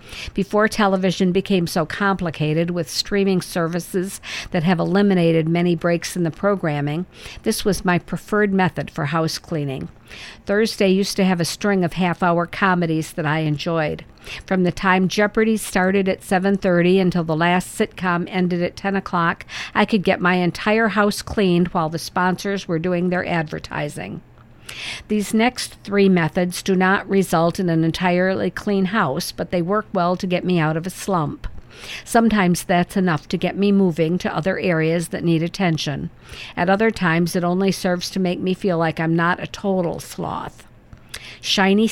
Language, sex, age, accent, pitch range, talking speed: English, female, 50-69, American, 170-195 Hz, 170 wpm